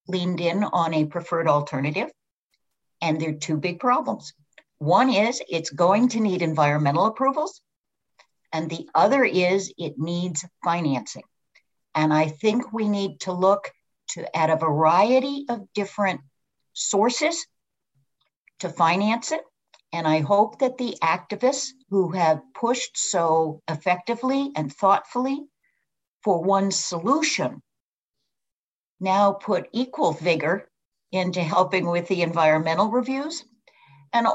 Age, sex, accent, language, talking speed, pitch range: 60-79, female, American, English, 120 wpm, 165-245 Hz